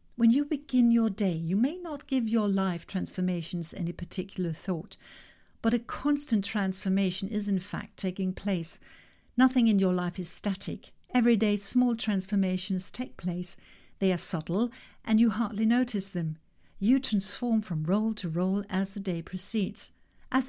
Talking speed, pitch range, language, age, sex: 160 wpm, 180-230 Hz, English, 60-79, female